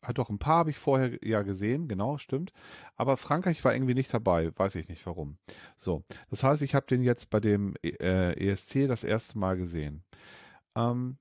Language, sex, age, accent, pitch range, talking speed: German, male, 40-59, German, 95-125 Hz, 195 wpm